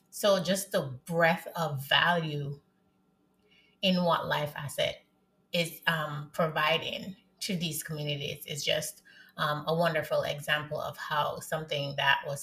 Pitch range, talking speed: 145-185 Hz, 130 wpm